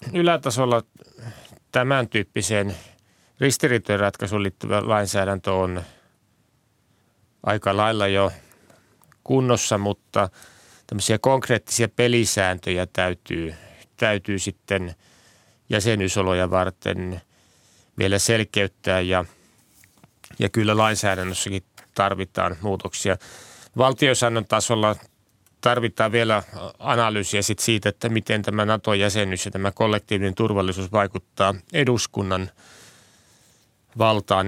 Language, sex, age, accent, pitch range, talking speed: Finnish, male, 30-49, native, 95-110 Hz, 80 wpm